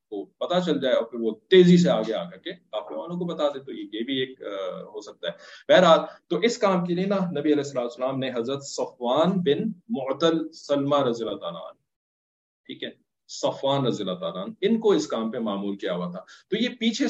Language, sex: English, male